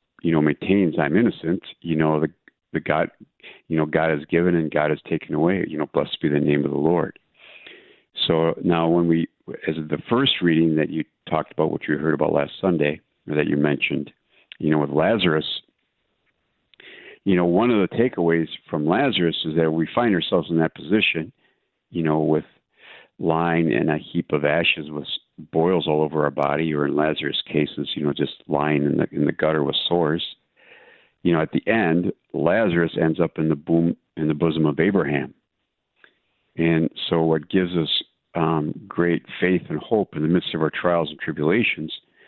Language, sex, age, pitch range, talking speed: English, male, 50-69, 75-85 Hz, 190 wpm